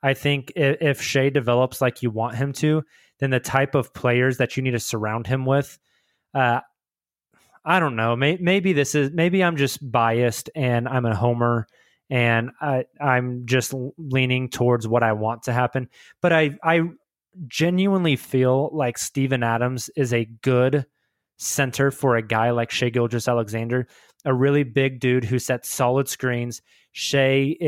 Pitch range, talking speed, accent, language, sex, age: 125-145 Hz, 165 wpm, American, English, male, 20-39